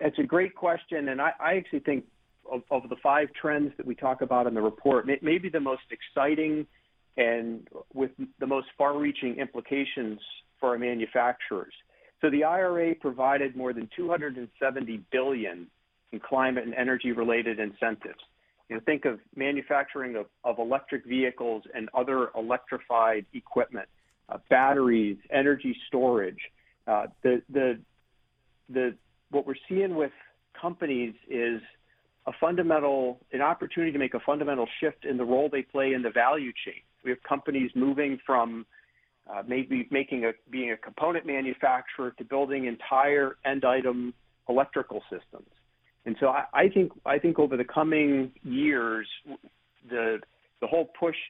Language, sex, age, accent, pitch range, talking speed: English, male, 40-59, American, 120-145 Hz, 145 wpm